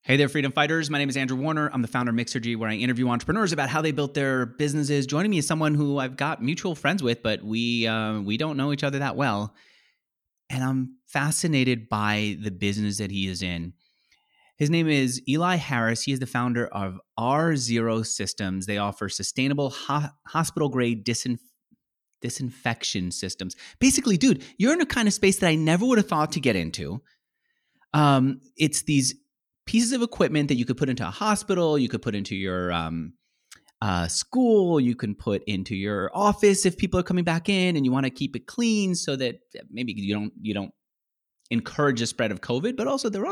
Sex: male